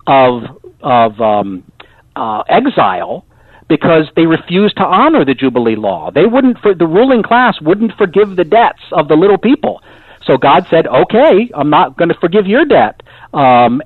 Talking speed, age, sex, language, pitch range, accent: 170 wpm, 50-69, male, English, 130-180 Hz, American